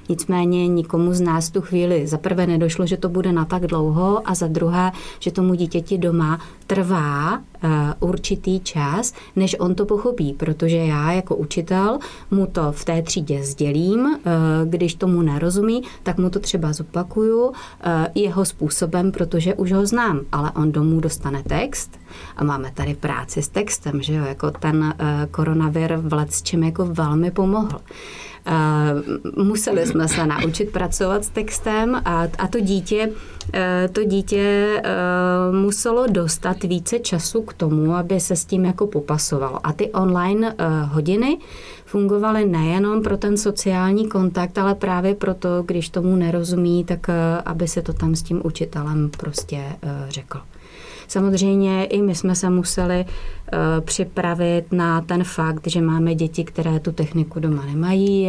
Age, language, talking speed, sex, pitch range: 30-49, English, 155 wpm, female, 155-190 Hz